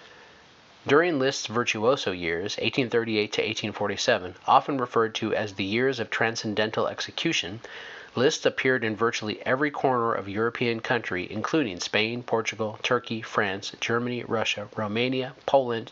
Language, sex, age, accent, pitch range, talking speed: English, male, 30-49, American, 110-130 Hz, 130 wpm